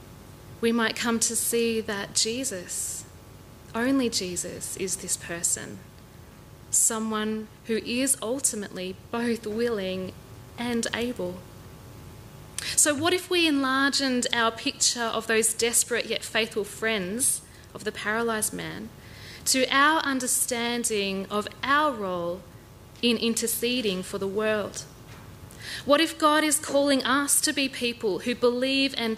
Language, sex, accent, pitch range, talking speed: English, female, Australian, 220-260 Hz, 125 wpm